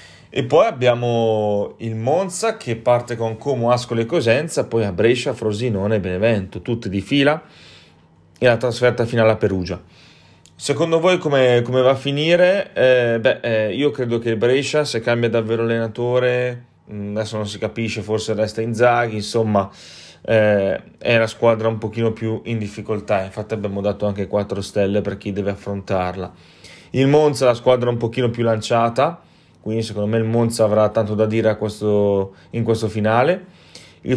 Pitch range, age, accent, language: 105-120 Hz, 30-49, native, Italian